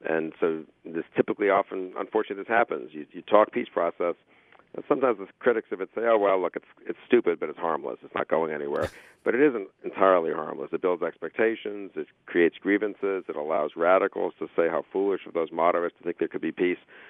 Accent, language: American, English